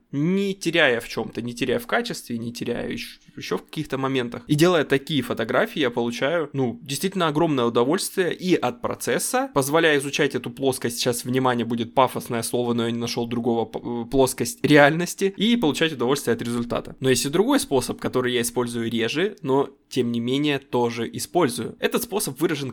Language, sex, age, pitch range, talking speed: Russian, male, 20-39, 120-150 Hz, 175 wpm